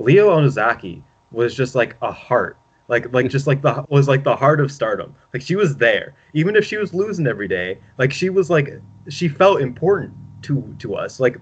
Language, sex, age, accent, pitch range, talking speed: English, male, 20-39, American, 120-150 Hz, 210 wpm